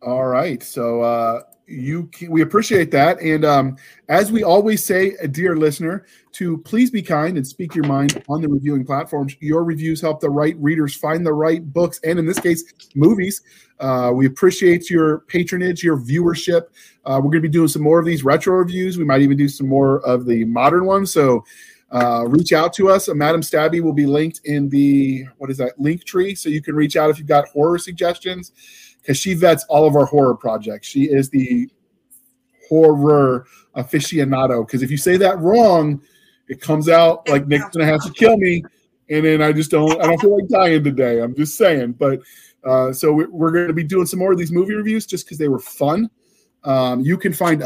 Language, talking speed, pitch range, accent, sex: English, 210 wpm, 140-175 Hz, American, male